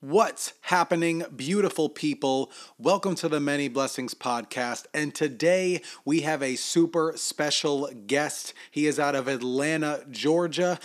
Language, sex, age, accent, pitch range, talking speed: English, male, 30-49, American, 125-160 Hz, 135 wpm